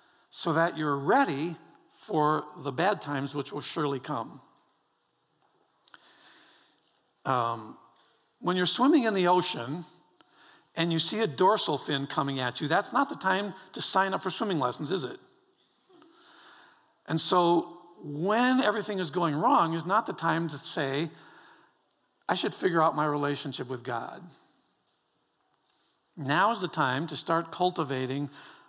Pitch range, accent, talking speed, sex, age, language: 150-195 Hz, American, 140 wpm, male, 50-69, English